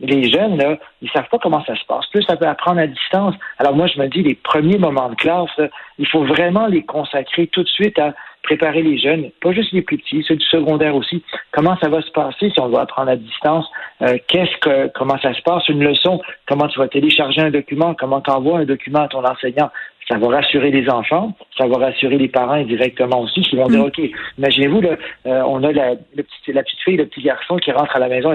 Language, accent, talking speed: French, French, 250 wpm